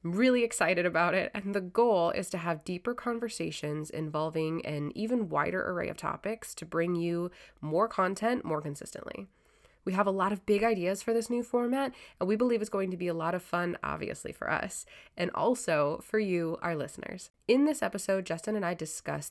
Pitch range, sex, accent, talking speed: 155-205 Hz, female, American, 200 wpm